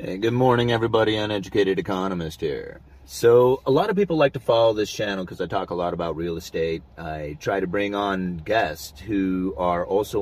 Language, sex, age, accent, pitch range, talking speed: English, male, 30-49, American, 80-100 Hz, 195 wpm